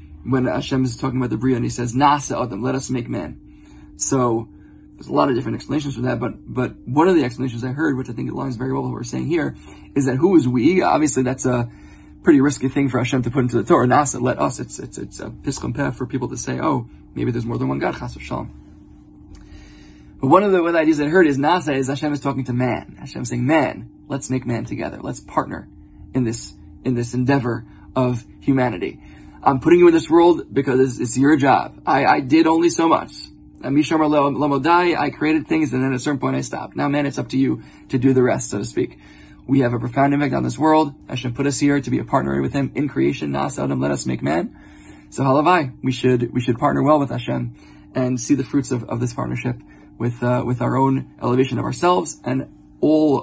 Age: 20-39